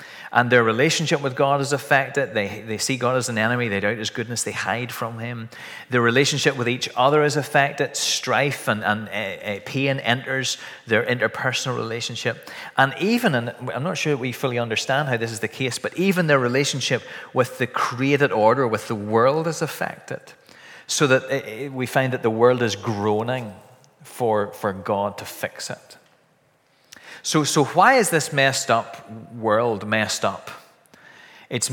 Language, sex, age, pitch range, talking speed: English, male, 30-49, 110-135 Hz, 170 wpm